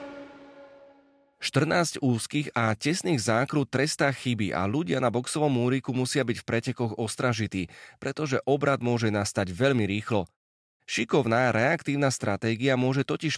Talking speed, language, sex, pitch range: 125 wpm, Slovak, male, 110-145 Hz